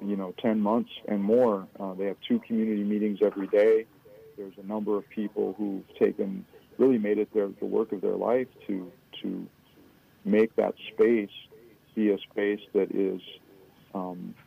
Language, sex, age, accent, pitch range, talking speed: English, male, 40-59, American, 100-110 Hz, 170 wpm